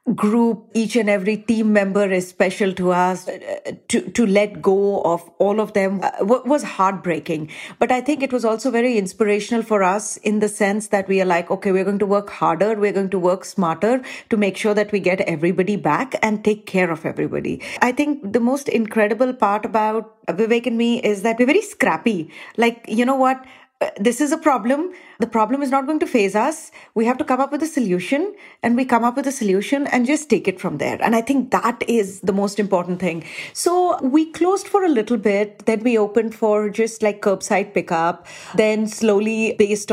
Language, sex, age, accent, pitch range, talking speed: English, female, 30-49, Indian, 195-245 Hz, 215 wpm